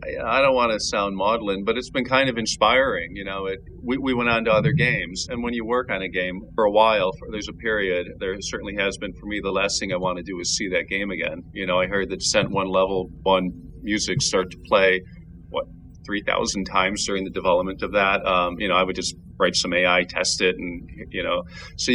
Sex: male